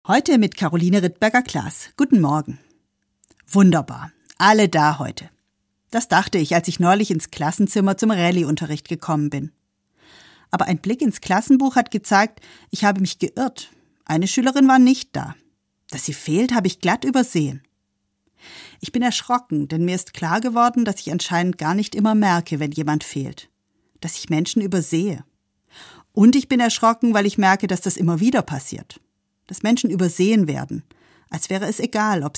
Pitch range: 150-220 Hz